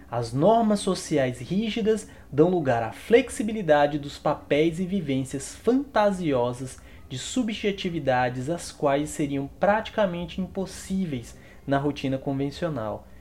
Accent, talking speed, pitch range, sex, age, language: Brazilian, 105 wpm, 125-190 Hz, male, 20-39, Portuguese